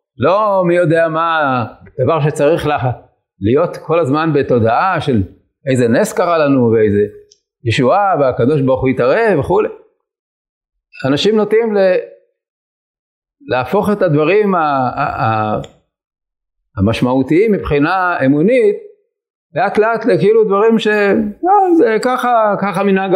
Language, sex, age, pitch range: Hebrew, male, 50-69, 150-220 Hz